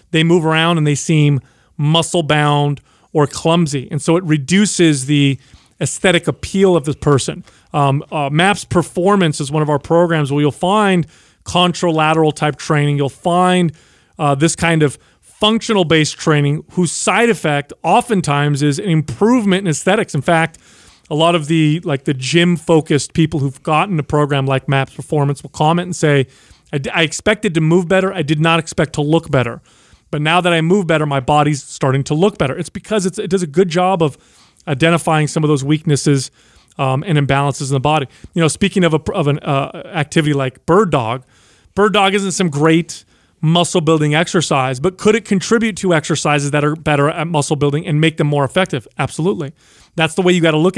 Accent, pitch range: American, 145-175 Hz